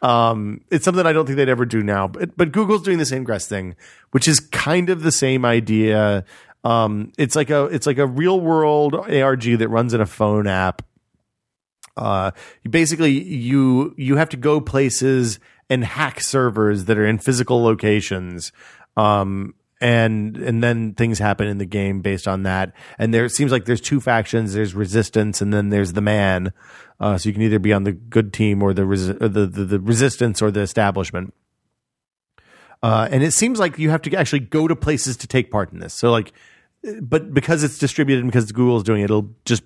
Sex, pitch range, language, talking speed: male, 100-135 Hz, English, 205 wpm